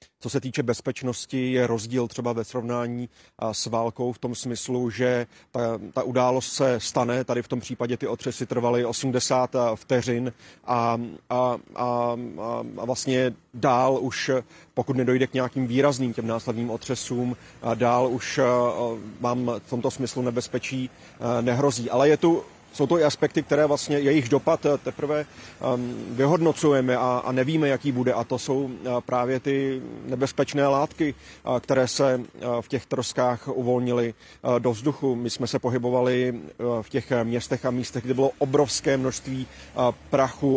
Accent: native